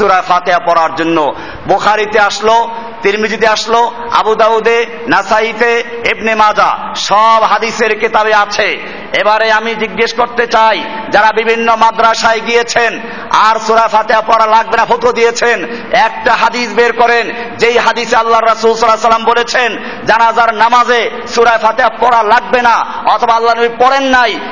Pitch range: 225-280 Hz